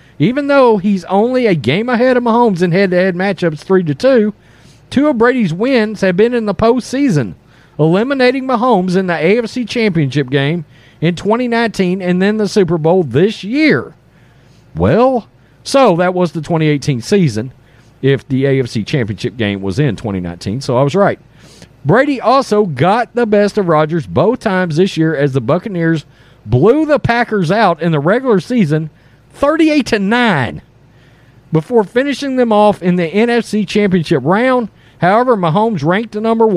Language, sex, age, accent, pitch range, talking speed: English, male, 40-59, American, 145-225 Hz, 160 wpm